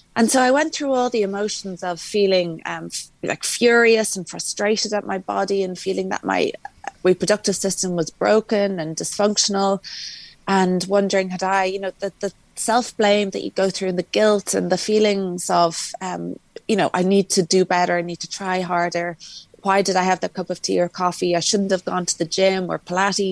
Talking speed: 205 wpm